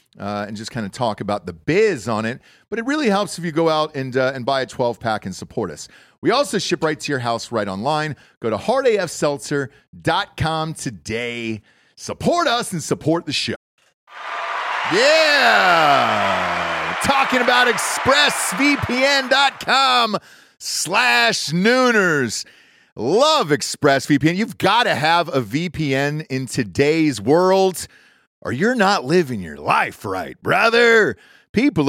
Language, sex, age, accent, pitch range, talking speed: English, male, 40-59, American, 135-200 Hz, 145 wpm